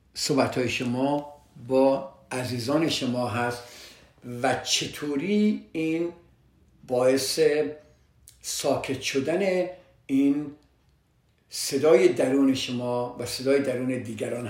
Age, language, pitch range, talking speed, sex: 50-69, Persian, 125-155 Hz, 85 wpm, male